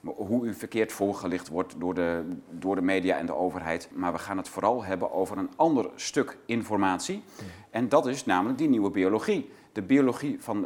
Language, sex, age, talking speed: Dutch, male, 40-59, 190 wpm